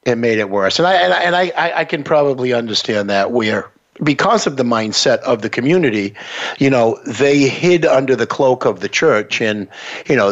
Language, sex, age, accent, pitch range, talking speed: English, male, 60-79, American, 110-140 Hz, 210 wpm